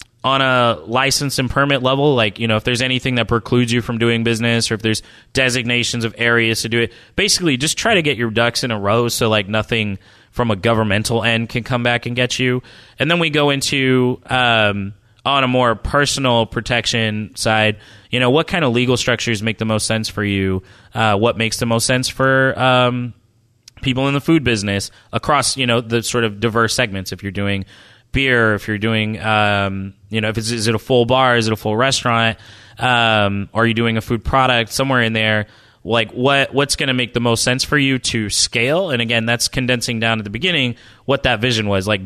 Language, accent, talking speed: English, American, 220 wpm